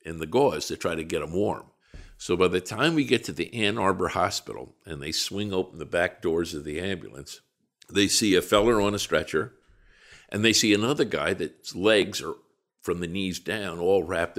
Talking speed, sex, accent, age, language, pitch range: 215 wpm, male, American, 50-69, English, 90-105 Hz